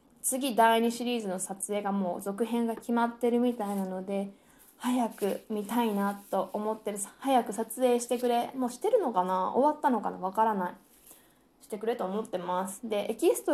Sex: female